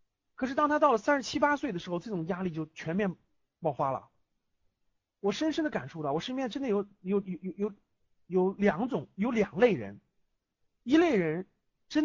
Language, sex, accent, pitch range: Chinese, male, native, 190-305 Hz